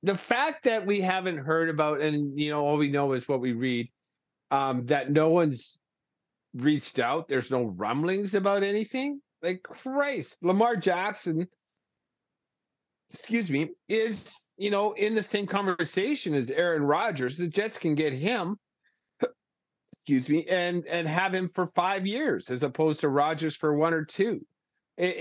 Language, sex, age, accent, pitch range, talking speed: English, male, 50-69, American, 130-180 Hz, 160 wpm